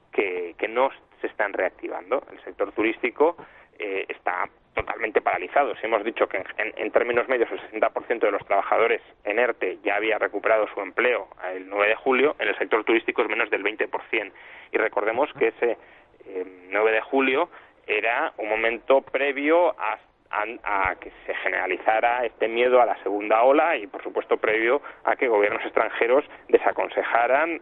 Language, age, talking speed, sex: Spanish, 30-49, 170 wpm, male